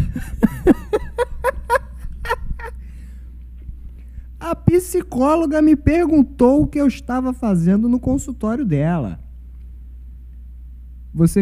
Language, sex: Portuguese, male